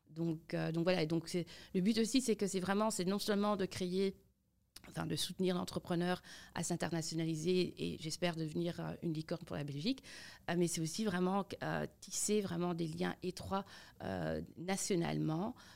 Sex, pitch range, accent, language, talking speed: female, 165-185 Hz, French, French, 170 wpm